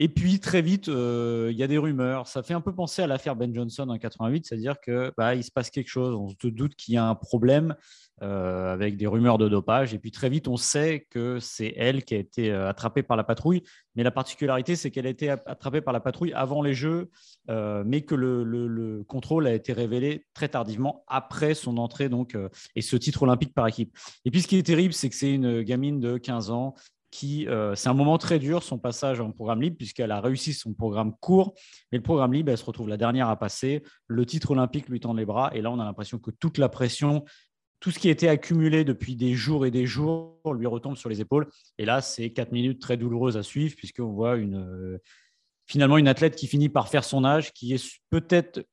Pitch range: 115-150 Hz